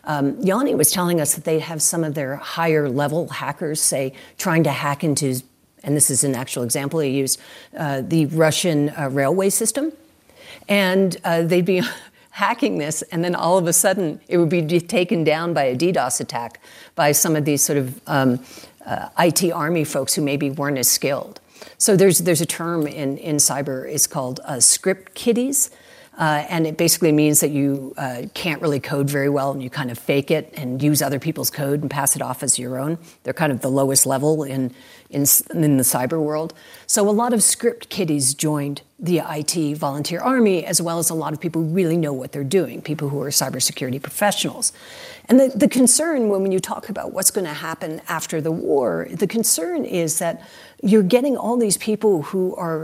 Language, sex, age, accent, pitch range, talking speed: English, female, 50-69, American, 140-185 Hz, 205 wpm